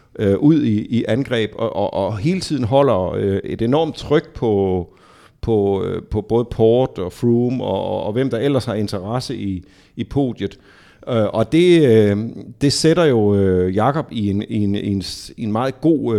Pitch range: 105-140 Hz